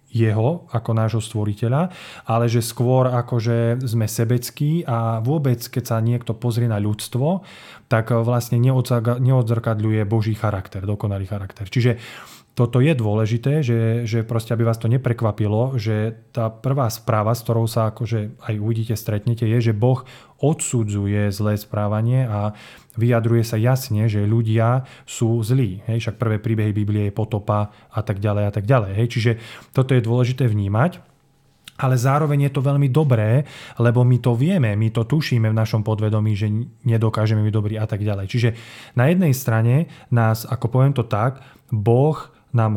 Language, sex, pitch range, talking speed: Slovak, male, 110-130 Hz, 160 wpm